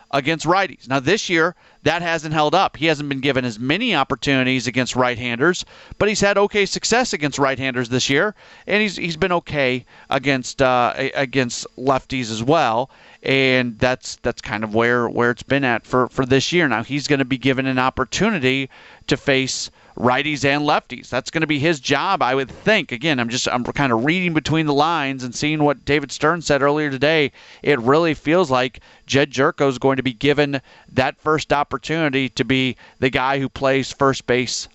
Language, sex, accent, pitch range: English, male, American, 130-170 Hz